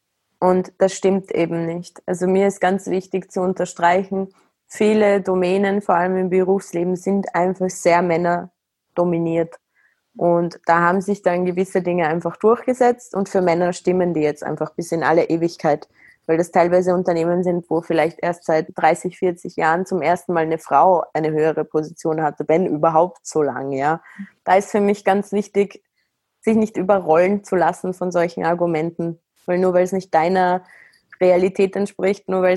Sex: female